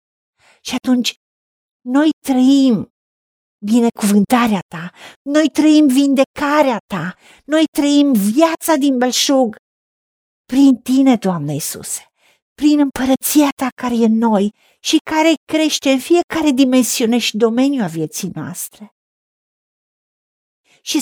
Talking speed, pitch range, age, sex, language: 105 wpm, 220-275 Hz, 50-69, female, Romanian